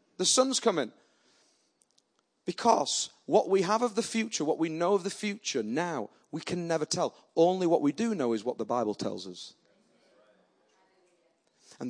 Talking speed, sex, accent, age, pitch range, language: 165 wpm, male, British, 30-49, 125-195 Hz, English